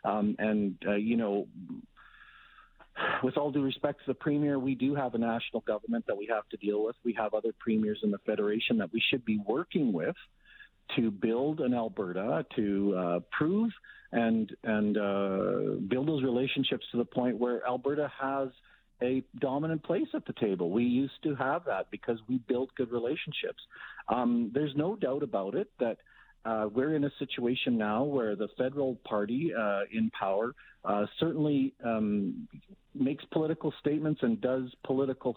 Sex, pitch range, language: male, 105-140 Hz, English